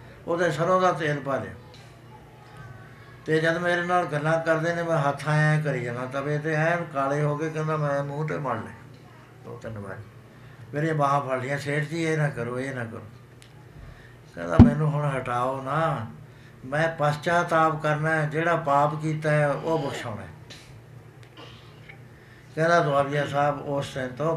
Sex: male